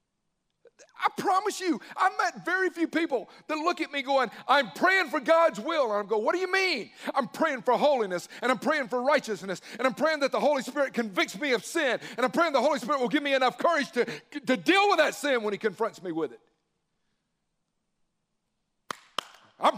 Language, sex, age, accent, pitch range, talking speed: English, male, 50-69, American, 210-300 Hz, 210 wpm